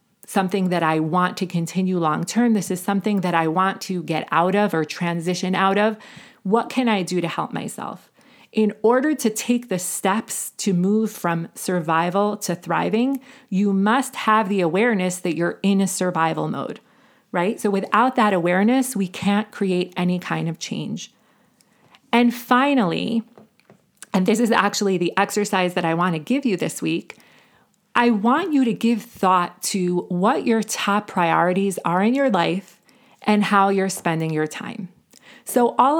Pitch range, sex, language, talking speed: 180-230 Hz, female, English, 170 wpm